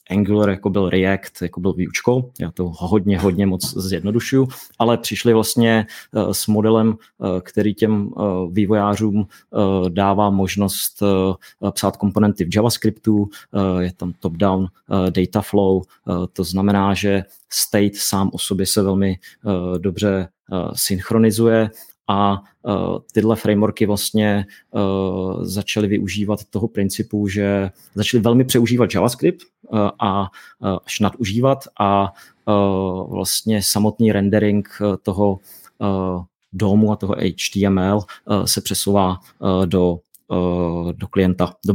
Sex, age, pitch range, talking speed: male, 30-49, 95-110 Hz, 115 wpm